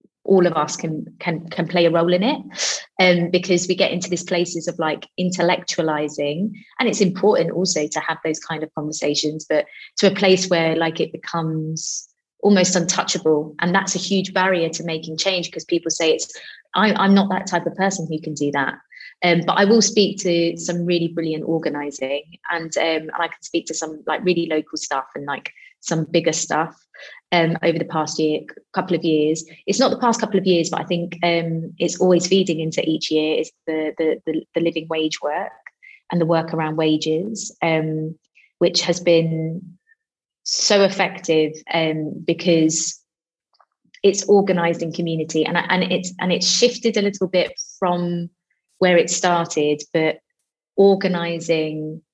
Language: English